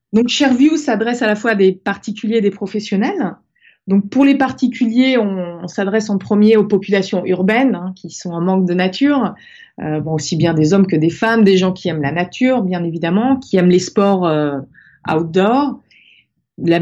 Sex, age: female, 20-39